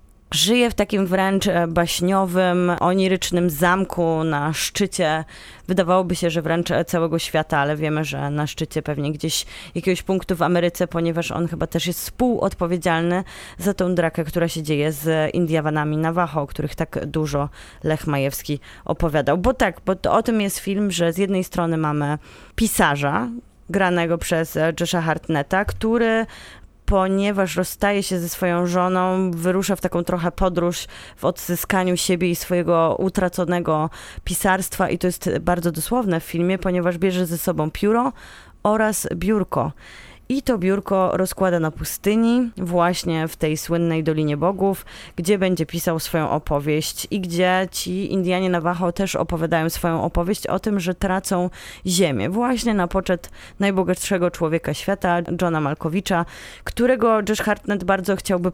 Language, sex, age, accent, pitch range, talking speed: Polish, female, 20-39, native, 160-190 Hz, 145 wpm